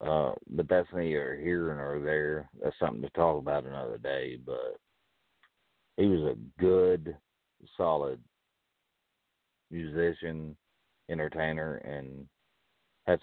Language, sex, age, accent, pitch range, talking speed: English, male, 50-69, American, 75-90 Hz, 110 wpm